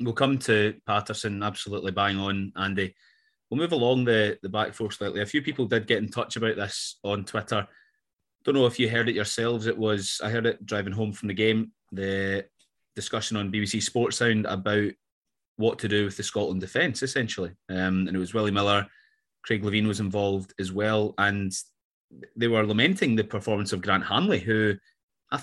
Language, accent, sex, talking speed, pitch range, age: English, British, male, 195 wpm, 100-115 Hz, 30-49